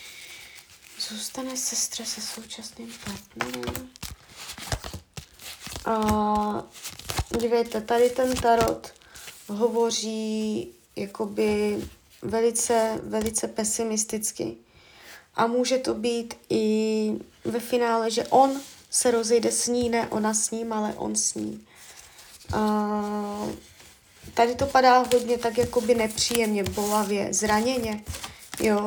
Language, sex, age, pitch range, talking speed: Czech, female, 20-39, 215-245 Hz, 95 wpm